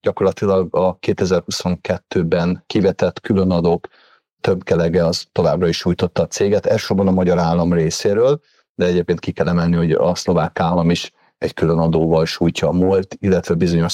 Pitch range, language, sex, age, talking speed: 90-110 Hz, Hungarian, male, 30-49, 160 wpm